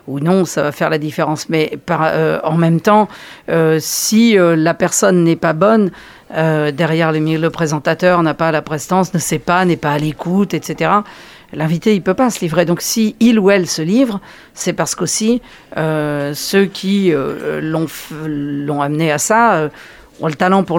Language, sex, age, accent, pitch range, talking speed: French, female, 50-69, French, 155-195 Hz, 195 wpm